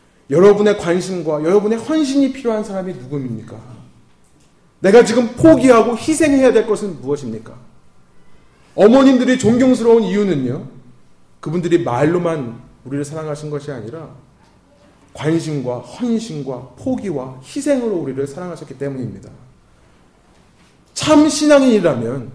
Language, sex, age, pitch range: Korean, male, 30-49, 130-195 Hz